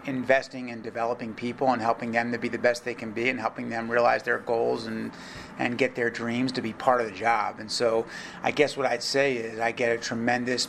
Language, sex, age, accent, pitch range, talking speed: English, male, 30-49, American, 120-130 Hz, 240 wpm